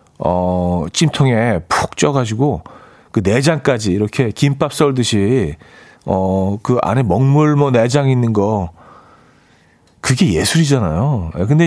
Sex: male